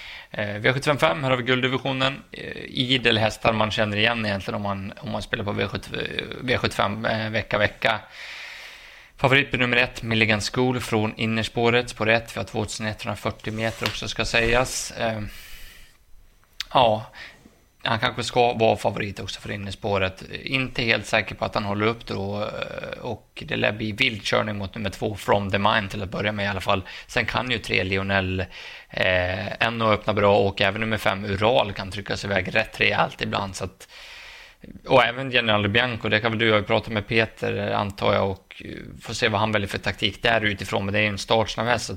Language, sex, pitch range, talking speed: Swedish, male, 100-120 Hz, 185 wpm